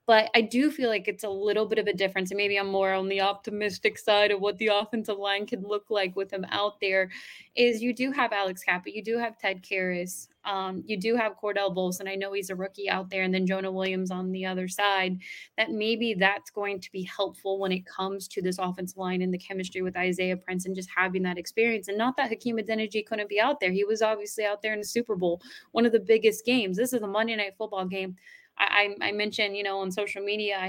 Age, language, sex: 20-39, English, female